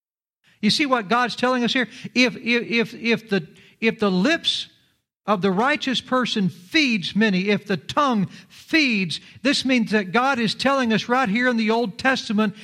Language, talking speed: English, 180 wpm